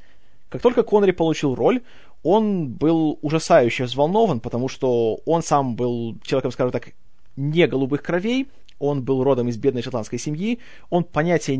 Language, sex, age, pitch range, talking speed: Russian, male, 20-39, 135-170 Hz, 150 wpm